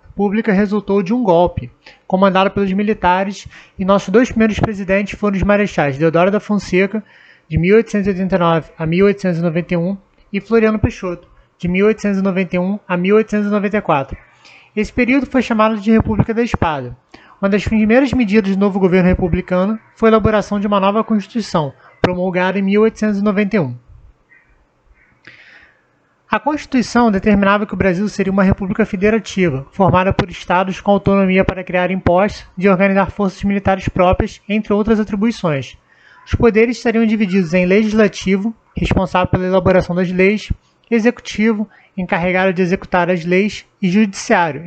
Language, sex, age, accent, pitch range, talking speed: Portuguese, male, 20-39, Brazilian, 185-215 Hz, 135 wpm